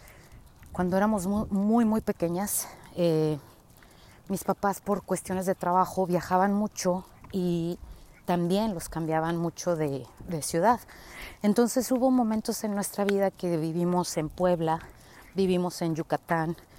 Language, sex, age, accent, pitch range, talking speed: Spanish, female, 30-49, Mexican, 175-210 Hz, 125 wpm